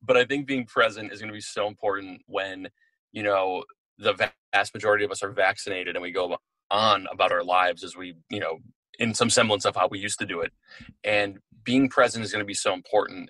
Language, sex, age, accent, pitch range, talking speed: English, male, 30-49, American, 105-135 Hz, 230 wpm